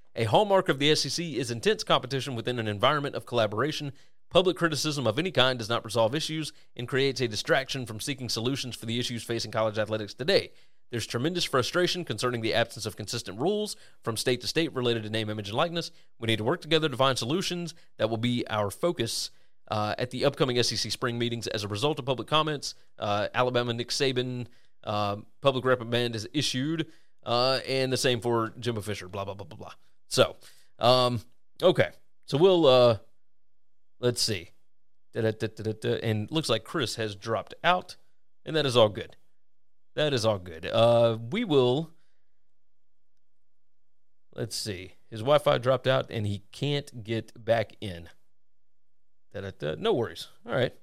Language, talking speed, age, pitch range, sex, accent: English, 170 wpm, 30-49, 110-140 Hz, male, American